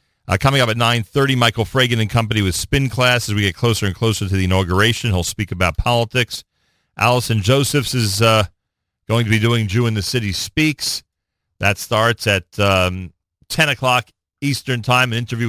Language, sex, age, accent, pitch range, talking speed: English, male, 40-59, American, 100-130 Hz, 185 wpm